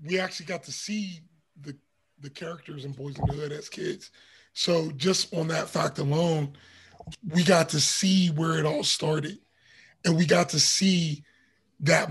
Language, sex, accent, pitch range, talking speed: English, male, American, 165-215 Hz, 175 wpm